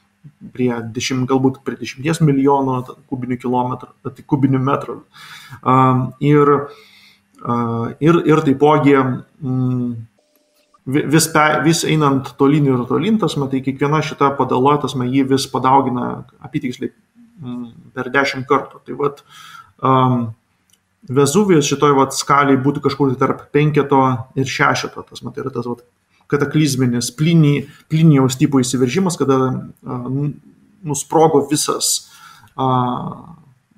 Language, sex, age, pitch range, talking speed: English, male, 20-39, 125-145 Hz, 115 wpm